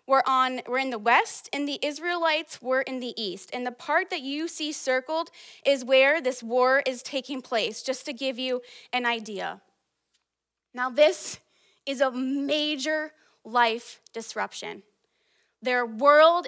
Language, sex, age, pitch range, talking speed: English, female, 20-39, 255-340 Hz, 150 wpm